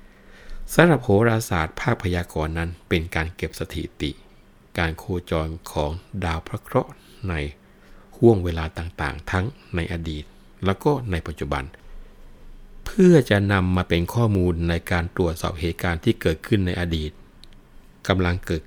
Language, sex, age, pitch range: Thai, male, 60-79, 80-100 Hz